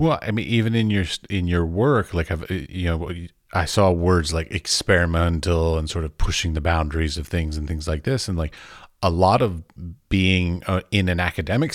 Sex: male